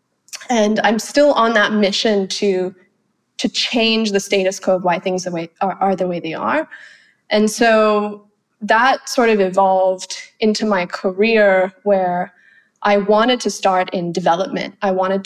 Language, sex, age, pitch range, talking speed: English, female, 20-39, 185-215 Hz, 165 wpm